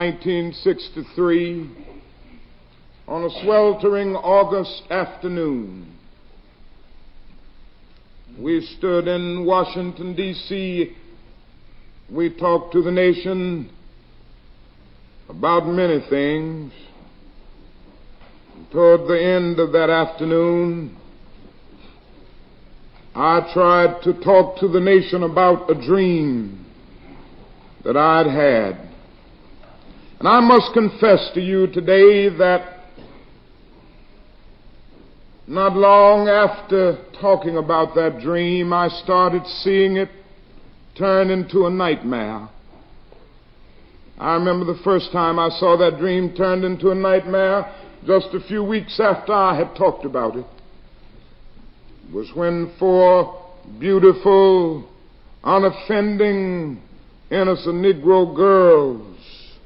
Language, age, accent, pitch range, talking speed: English, 60-79, American, 165-190 Hz, 95 wpm